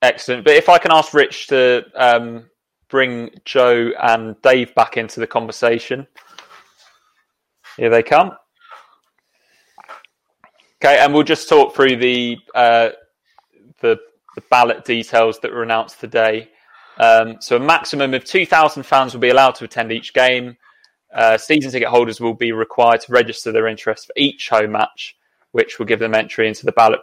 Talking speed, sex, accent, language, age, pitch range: 160 wpm, male, British, English, 20-39, 115-140 Hz